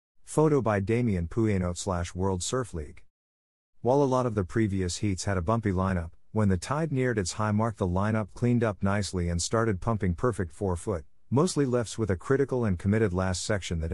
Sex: male